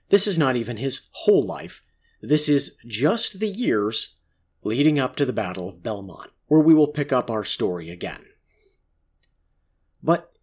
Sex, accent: male, American